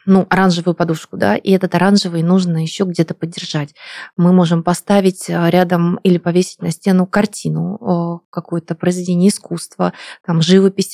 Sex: female